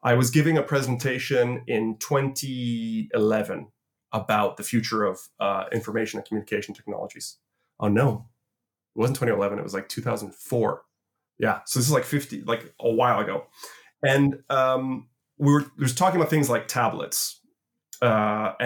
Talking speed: 150 wpm